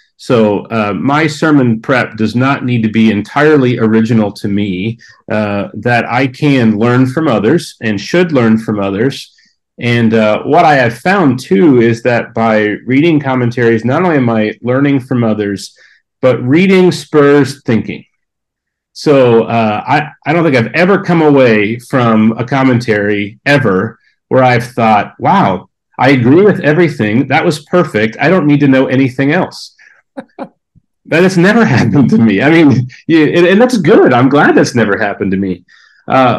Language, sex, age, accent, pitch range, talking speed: English, male, 40-59, American, 110-145 Hz, 165 wpm